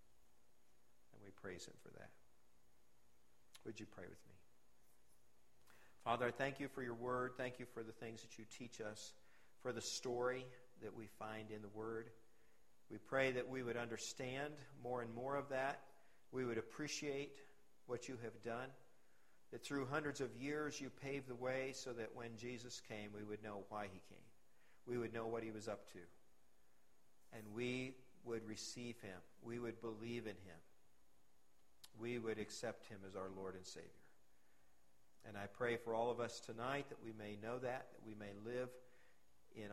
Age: 50-69